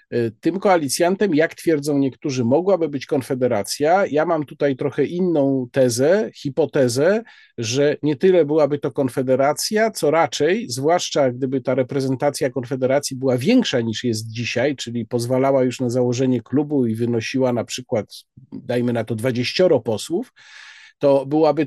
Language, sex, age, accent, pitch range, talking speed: Polish, male, 50-69, native, 130-175 Hz, 140 wpm